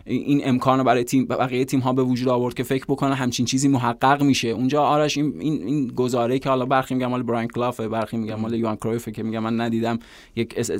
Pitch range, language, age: 115-135 Hz, Persian, 20-39